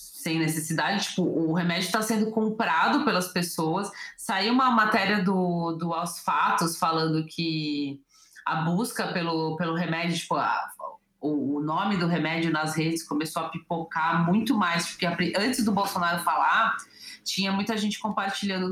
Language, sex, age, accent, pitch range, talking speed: Portuguese, female, 20-39, Brazilian, 170-215 Hz, 145 wpm